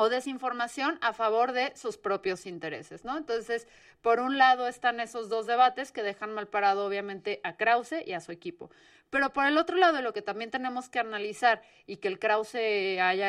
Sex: female